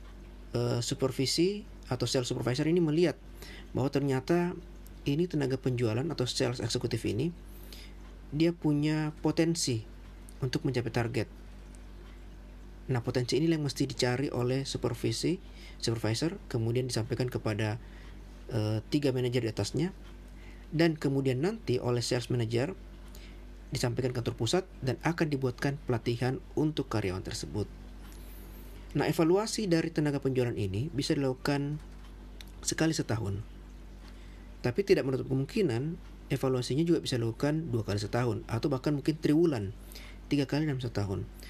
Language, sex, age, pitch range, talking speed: Indonesian, male, 40-59, 105-145 Hz, 120 wpm